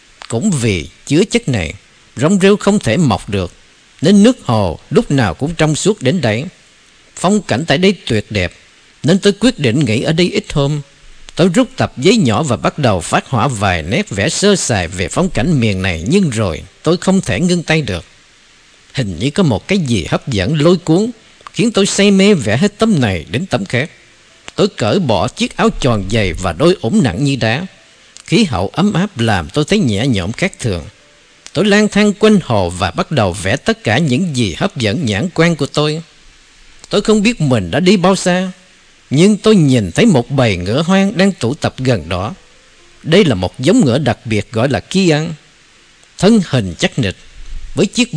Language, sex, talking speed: Vietnamese, male, 205 wpm